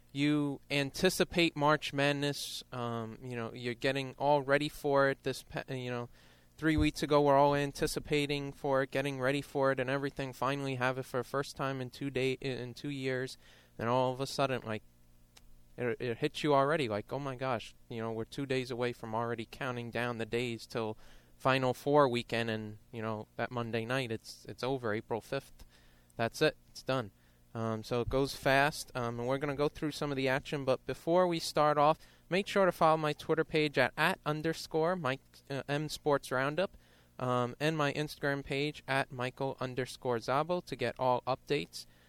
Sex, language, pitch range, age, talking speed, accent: male, English, 115-145 Hz, 20-39, 200 wpm, American